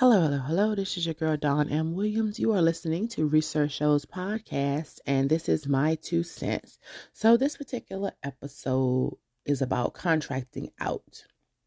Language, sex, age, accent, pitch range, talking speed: English, female, 30-49, American, 140-170 Hz, 160 wpm